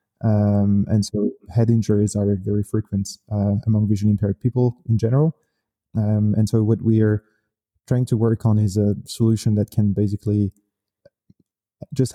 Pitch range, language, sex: 105-115 Hz, English, male